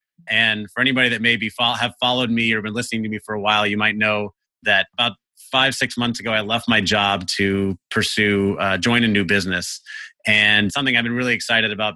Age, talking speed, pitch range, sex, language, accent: 30-49, 215 wpm, 105-125 Hz, male, English, American